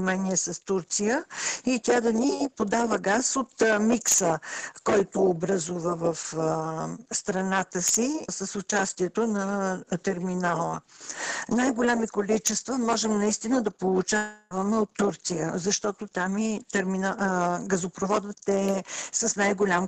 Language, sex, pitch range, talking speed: Bulgarian, female, 190-225 Hz, 105 wpm